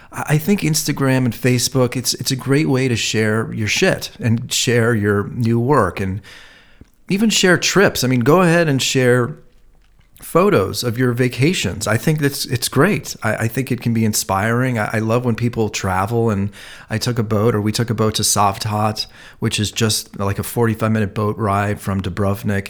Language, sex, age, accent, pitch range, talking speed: English, male, 40-59, American, 105-135 Hz, 200 wpm